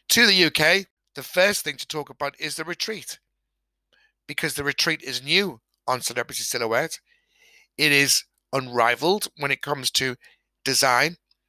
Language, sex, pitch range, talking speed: English, male, 120-185 Hz, 145 wpm